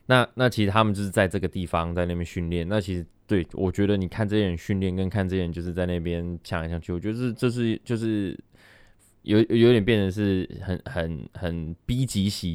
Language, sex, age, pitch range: Chinese, male, 20-39, 85-105 Hz